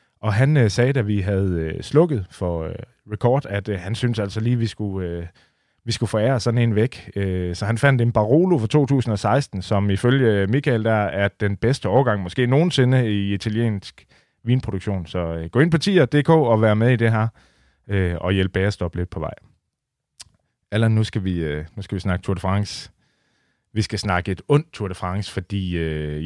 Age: 30-49